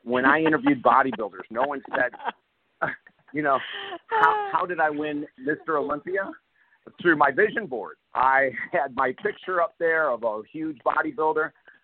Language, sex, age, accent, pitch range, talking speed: English, male, 50-69, American, 115-165 Hz, 150 wpm